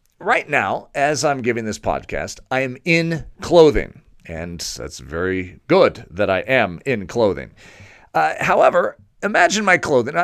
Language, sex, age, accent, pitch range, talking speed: English, male, 40-59, American, 105-160 Hz, 145 wpm